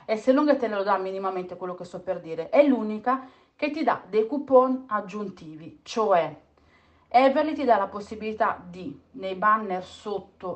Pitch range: 180-225 Hz